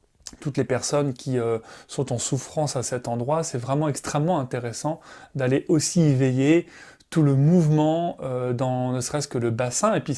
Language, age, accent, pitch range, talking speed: French, 30-49, French, 125-155 Hz, 175 wpm